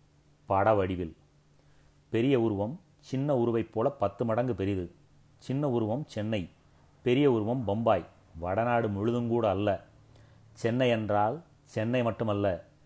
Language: Tamil